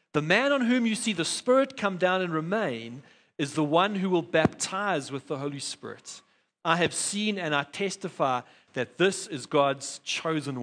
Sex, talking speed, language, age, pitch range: male, 185 wpm, English, 40-59, 160-225 Hz